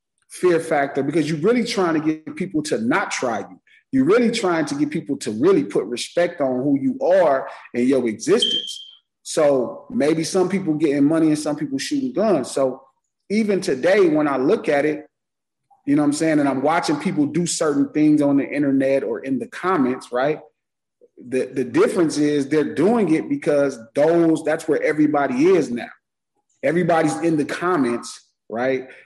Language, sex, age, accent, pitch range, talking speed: English, male, 30-49, American, 140-180 Hz, 180 wpm